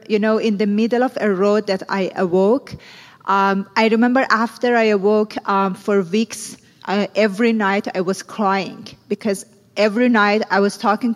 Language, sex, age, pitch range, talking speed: English, female, 40-59, 195-220 Hz, 170 wpm